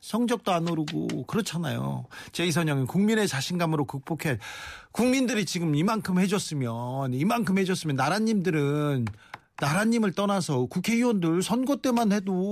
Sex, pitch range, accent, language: male, 140-195 Hz, native, Korean